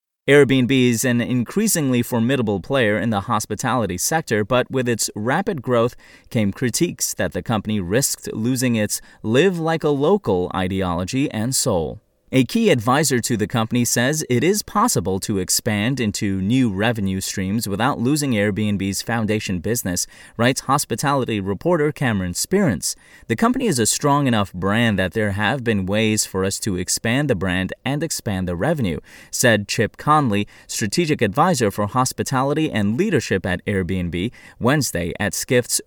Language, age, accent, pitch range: English, 30-49, American, 100-140 Hz